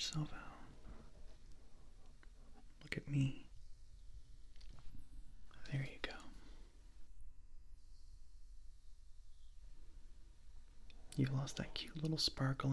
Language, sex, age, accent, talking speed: English, male, 30-49, American, 60 wpm